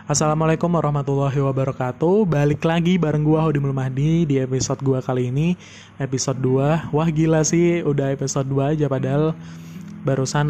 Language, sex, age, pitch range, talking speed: Indonesian, male, 20-39, 130-150 Hz, 145 wpm